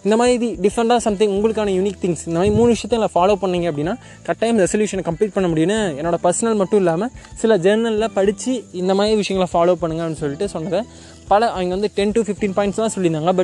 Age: 20-39